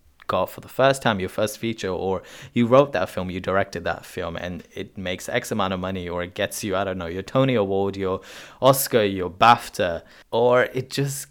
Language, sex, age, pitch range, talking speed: English, male, 20-39, 95-115 Hz, 220 wpm